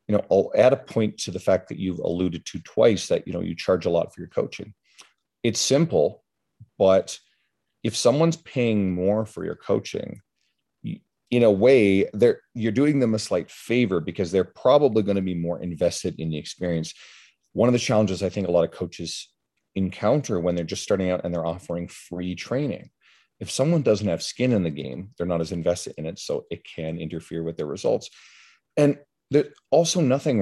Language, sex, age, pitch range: English, male, 40-59, 85-110 Hz